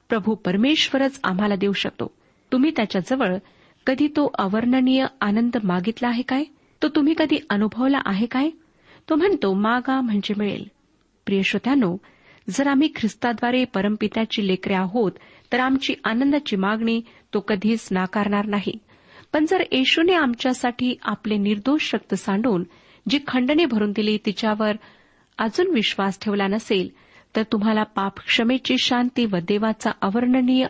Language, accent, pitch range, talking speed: Marathi, native, 200-265 Hz, 125 wpm